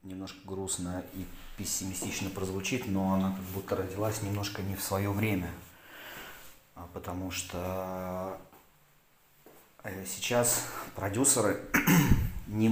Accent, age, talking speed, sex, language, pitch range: native, 30-49, 95 wpm, male, Russian, 90-105 Hz